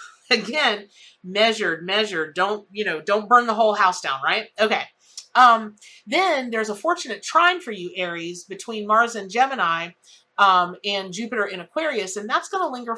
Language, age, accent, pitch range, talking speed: English, 40-59, American, 185-235 Hz, 170 wpm